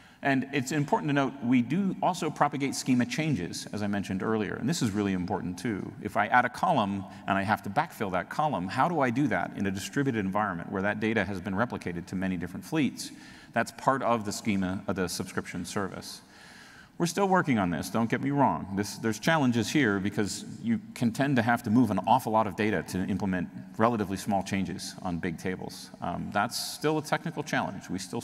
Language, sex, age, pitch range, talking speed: English, male, 40-59, 100-135 Hz, 220 wpm